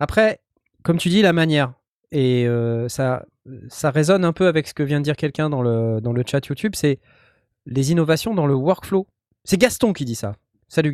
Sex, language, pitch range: male, French, 115-155 Hz